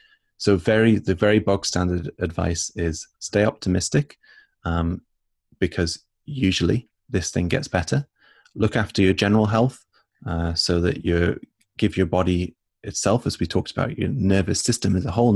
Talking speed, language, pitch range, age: 155 wpm, English, 85-110 Hz, 20-39